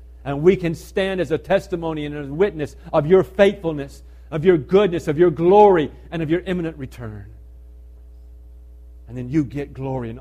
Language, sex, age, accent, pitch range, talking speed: English, male, 50-69, American, 100-165 Hz, 175 wpm